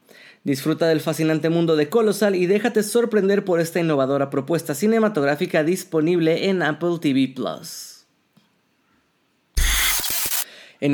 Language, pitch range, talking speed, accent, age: Spanish, 145-205 Hz, 105 wpm, Mexican, 30-49